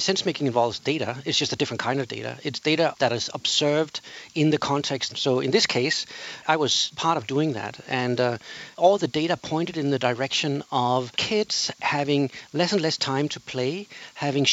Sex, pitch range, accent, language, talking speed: male, 130-165 Hz, Danish, English, 195 wpm